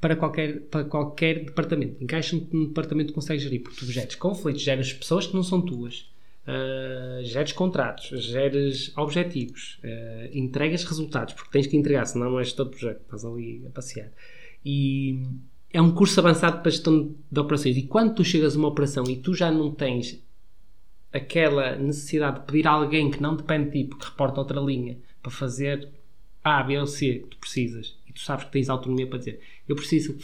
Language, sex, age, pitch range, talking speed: Portuguese, male, 20-39, 130-155 Hz, 190 wpm